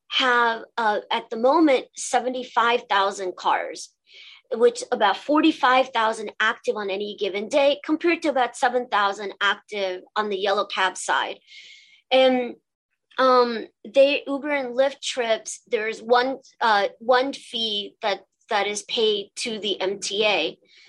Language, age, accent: English, 40-59, American